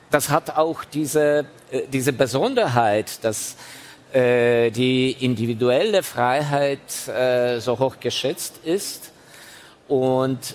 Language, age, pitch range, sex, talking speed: German, 50-69, 115-140 Hz, male, 95 wpm